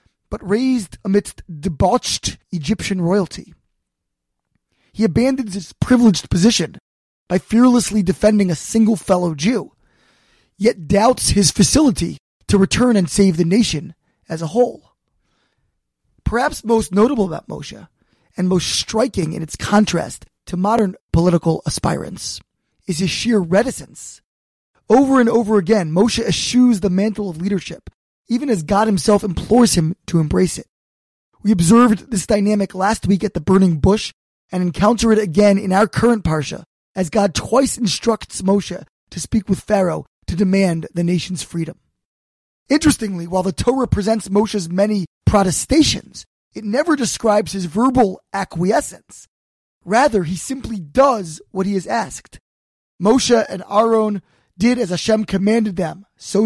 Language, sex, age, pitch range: English, male, 20-39, 180-225 Hz